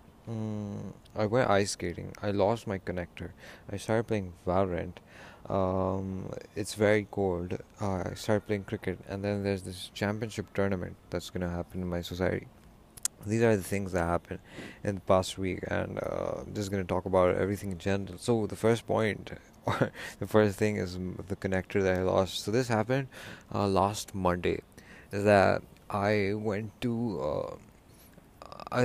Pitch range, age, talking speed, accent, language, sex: 90-105 Hz, 20-39, 165 wpm, Indian, English, male